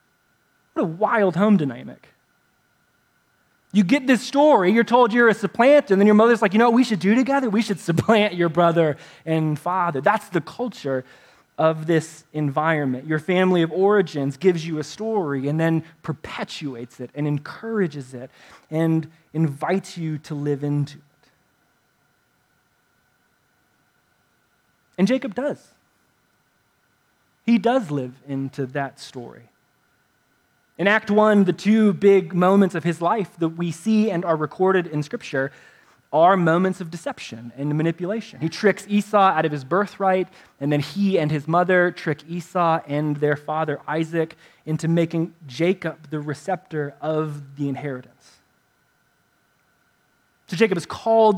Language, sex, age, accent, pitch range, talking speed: English, male, 20-39, American, 150-205 Hz, 145 wpm